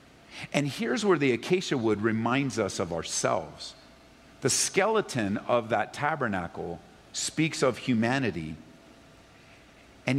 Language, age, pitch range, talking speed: English, 50-69, 135-185 Hz, 110 wpm